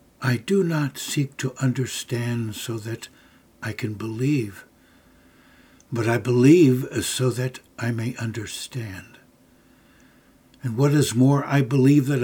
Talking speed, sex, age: 125 wpm, male, 60-79